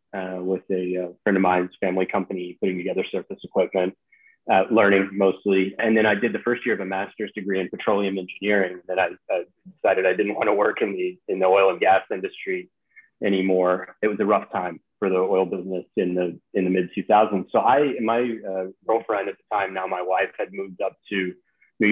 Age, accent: 30-49, American